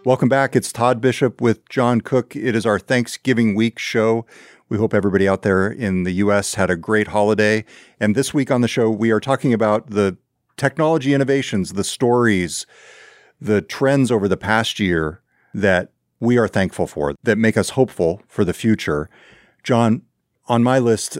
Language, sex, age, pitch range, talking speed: English, male, 50-69, 90-120 Hz, 180 wpm